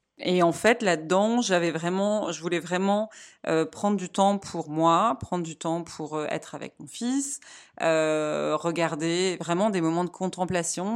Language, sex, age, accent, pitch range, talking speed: French, female, 30-49, French, 160-195 Hz, 170 wpm